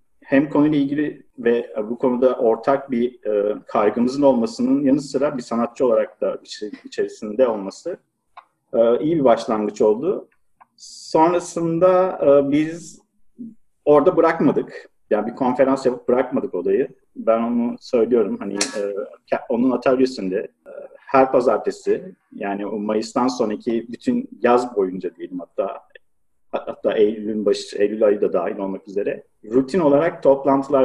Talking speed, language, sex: 130 wpm, Turkish, male